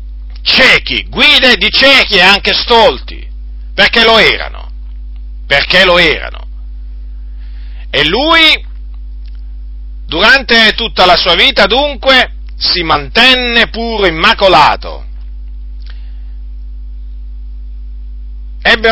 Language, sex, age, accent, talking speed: Italian, male, 50-69, native, 80 wpm